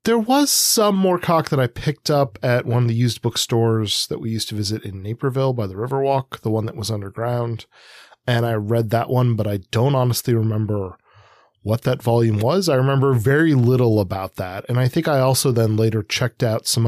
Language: English